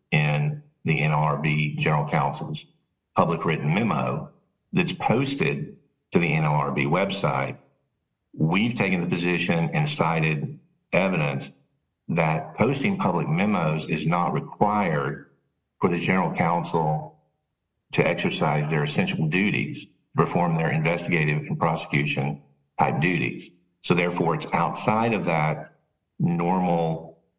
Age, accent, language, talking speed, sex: 50-69, American, English, 110 wpm, male